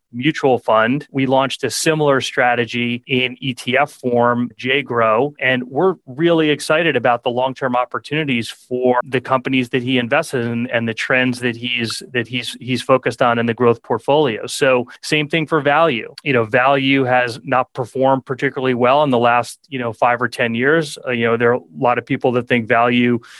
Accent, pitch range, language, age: American, 120-140 Hz, English, 30-49